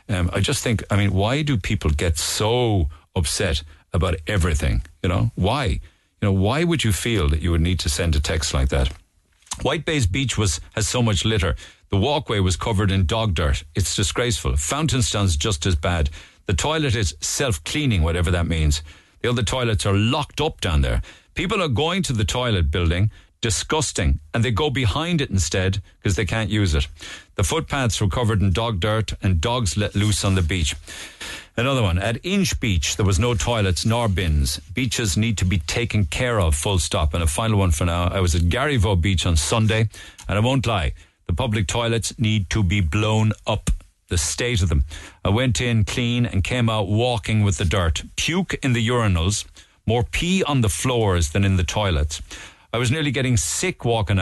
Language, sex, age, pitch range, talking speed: English, male, 50-69, 85-115 Hz, 200 wpm